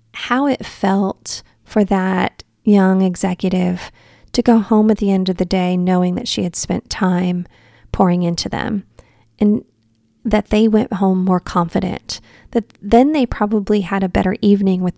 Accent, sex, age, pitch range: American, female, 30-49, 185-235 Hz